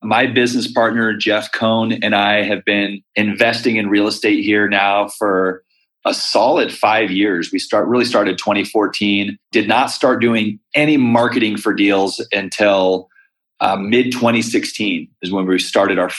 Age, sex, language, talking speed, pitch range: 30-49, male, English, 160 wpm, 100-115 Hz